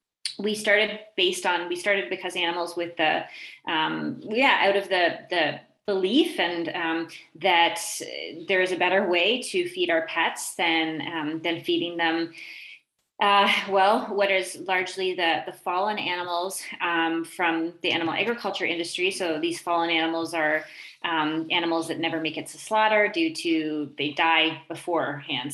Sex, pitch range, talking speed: female, 165-200 Hz, 155 wpm